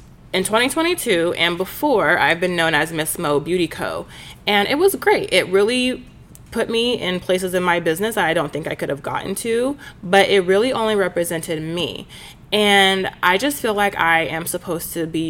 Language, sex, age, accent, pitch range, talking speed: English, female, 20-39, American, 165-220 Hz, 190 wpm